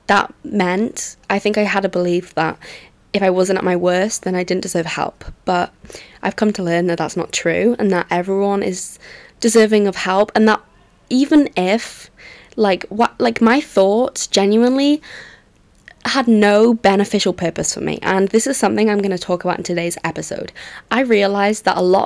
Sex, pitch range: female, 180-215 Hz